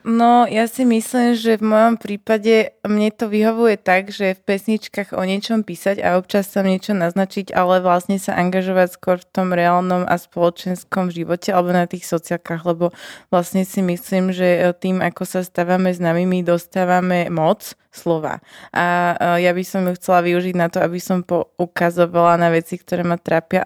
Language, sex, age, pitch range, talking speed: Slovak, female, 20-39, 175-195 Hz, 175 wpm